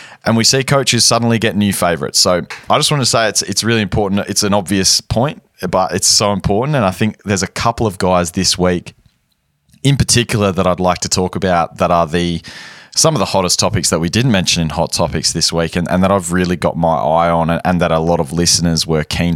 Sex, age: male, 20-39